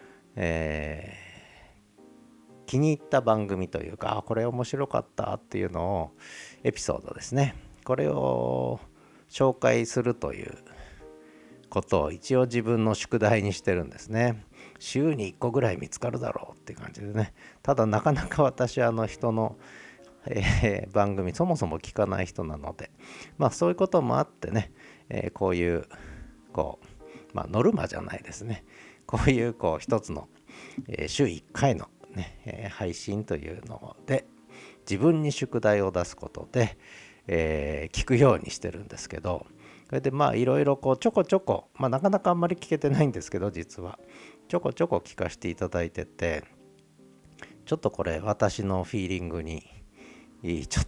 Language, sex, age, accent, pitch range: Japanese, male, 50-69, native, 85-120 Hz